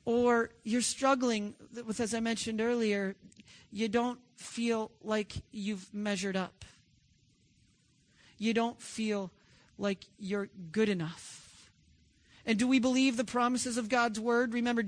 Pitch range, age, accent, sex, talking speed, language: 185-240 Hz, 40-59, American, male, 130 wpm, English